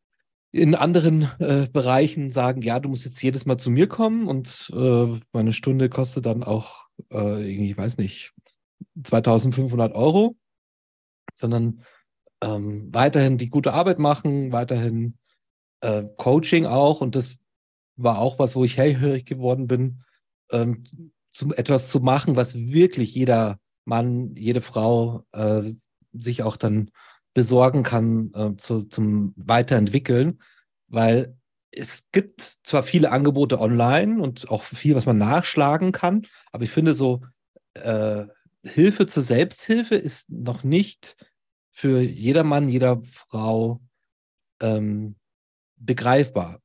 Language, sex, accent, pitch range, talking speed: German, male, German, 115-140 Hz, 125 wpm